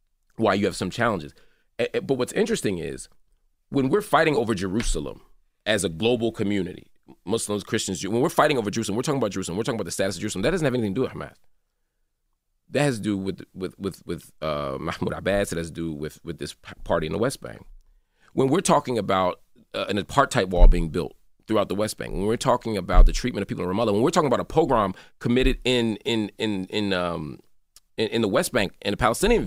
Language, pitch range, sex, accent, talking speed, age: English, 95-130 Hz, male, American, 225 wpm, 30-49